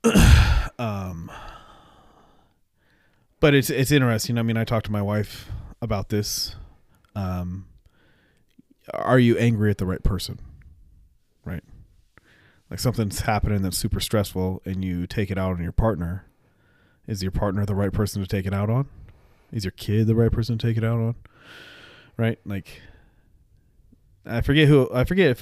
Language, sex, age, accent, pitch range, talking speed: English, male, 30-49, American, 90-115 Hz, 160 wpm